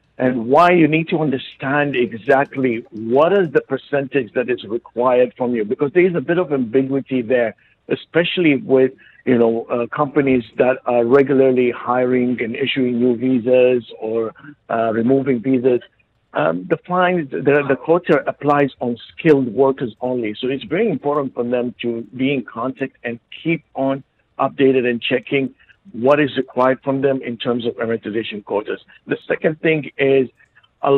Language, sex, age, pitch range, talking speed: English, male, 60-79, 120-145 Hz, 165 wpm